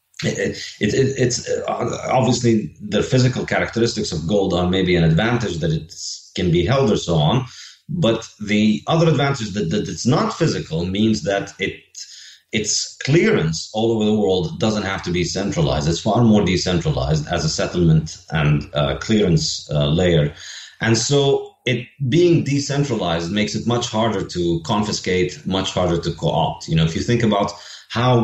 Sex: male